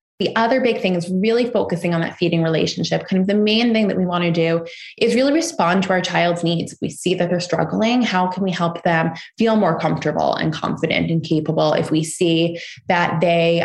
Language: English